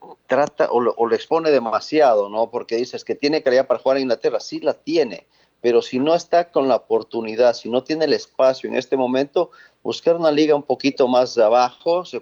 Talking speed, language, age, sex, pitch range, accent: 205 wpm, Spanish, 40-59, male, 120-155 Hz, Mexican